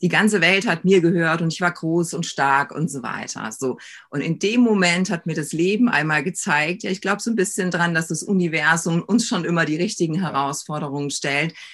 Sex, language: female, German